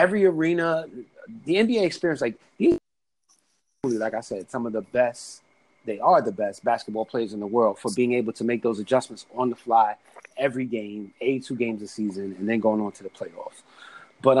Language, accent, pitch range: English, American, 115-135 Hz